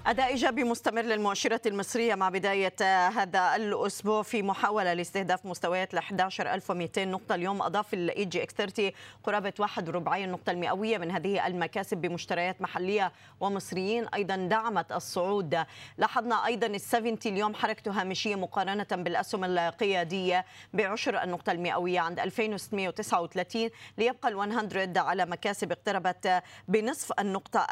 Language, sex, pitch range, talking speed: Arabic, female, 185-215 Hz, 115 wpm